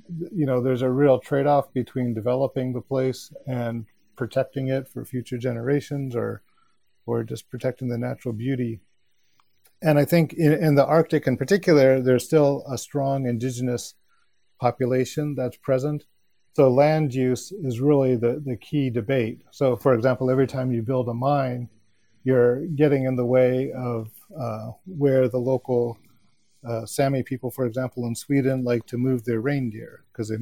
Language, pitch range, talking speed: English, 120-135 Hz, 160 wpm